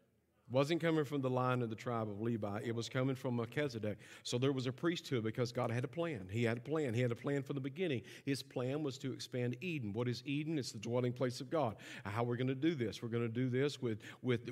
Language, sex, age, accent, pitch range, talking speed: English, male, 50-69, American, 130-190 Hz, 265 wpm